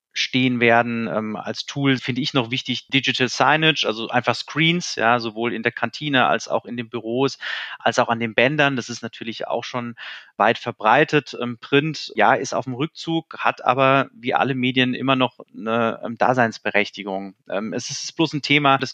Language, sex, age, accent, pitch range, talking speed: German, male, 30-49, German, 120-140 Hz, 180 wpm